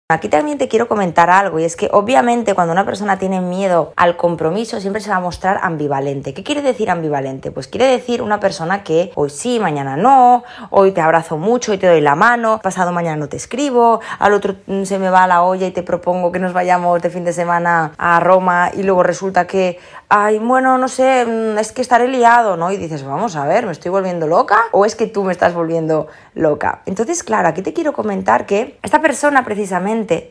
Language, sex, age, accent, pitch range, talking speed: Spanish, female, 20-39, Spanish, 175-225 Hz, 220 wpm